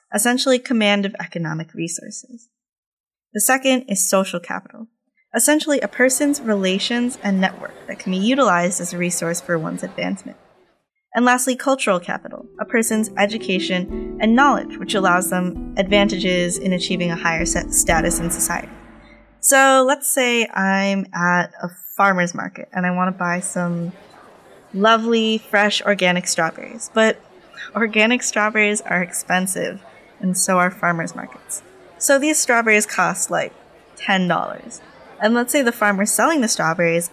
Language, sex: English, female